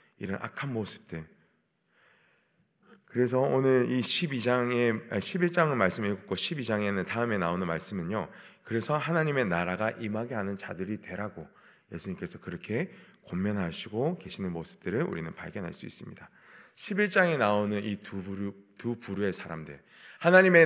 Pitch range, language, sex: 95-135 Hz, Korean, male